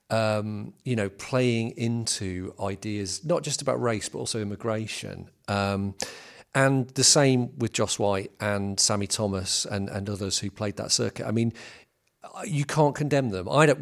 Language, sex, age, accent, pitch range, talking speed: English, male, 40-59, British, 100-115 Hz, 175 wpm